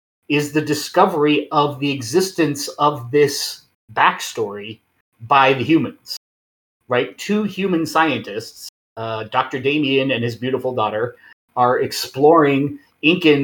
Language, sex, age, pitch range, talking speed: English, male, 30-49, 120-150 Hz, 115 wpm